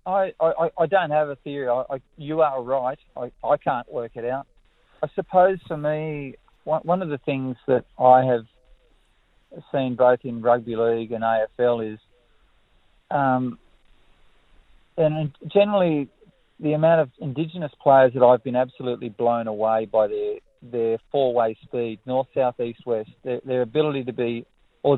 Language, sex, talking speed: English, male, 160 wpm